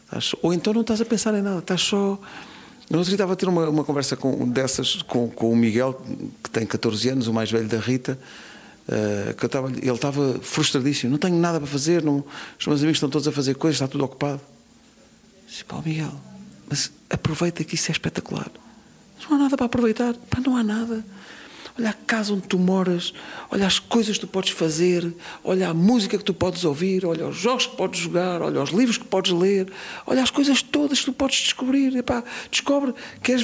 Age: 50-69